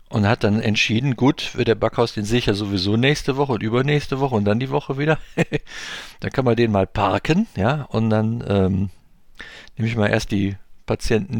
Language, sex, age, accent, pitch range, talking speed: English, male, 50-69, German, 95-115 Hz, 195 wpm